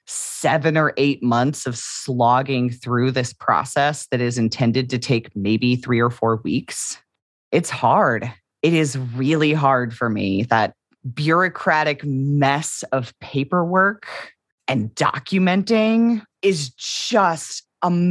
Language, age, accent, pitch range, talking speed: English, 30-49, American, 130-180 Hz, 125 wpm